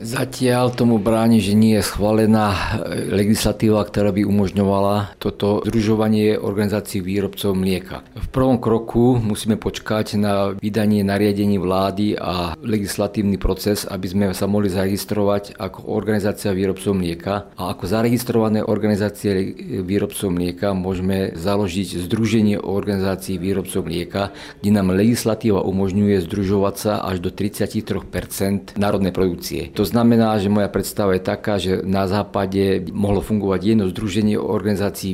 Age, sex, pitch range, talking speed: 50-69, male, 95-105 Hz, 130 wpm